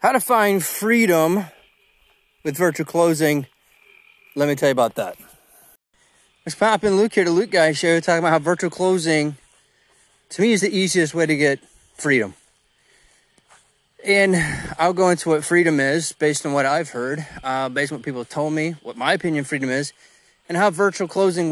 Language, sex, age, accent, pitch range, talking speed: English, male, 30-49, American, 145-175 Hz, 180 wpm